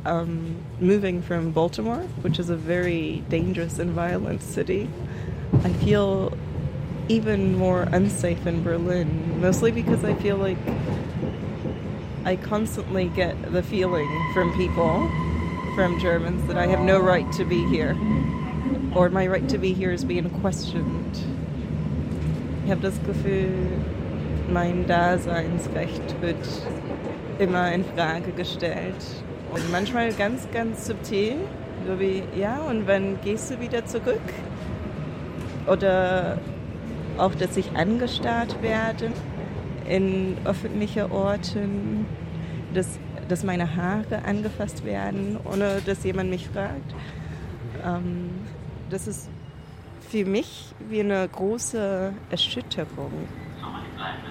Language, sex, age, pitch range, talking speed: German, female, 20-39, 160-195 Hz, 115 wpm